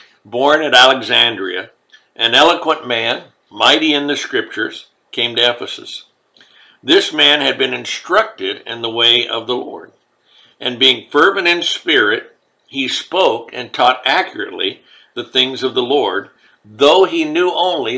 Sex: male